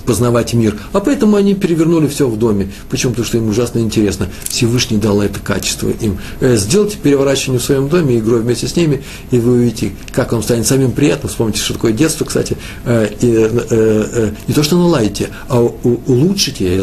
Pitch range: 105-135 Hz